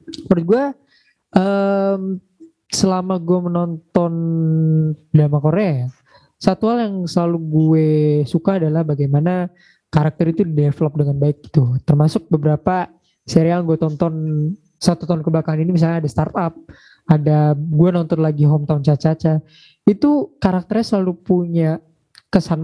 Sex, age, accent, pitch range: male, 20-39, native, 155-190 Hz